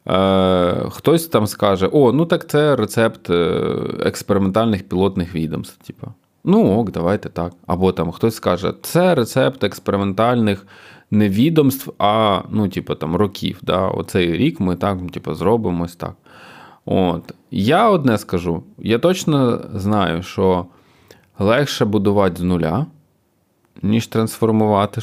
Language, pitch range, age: Ukrainian, 90-115 Hz, 20-39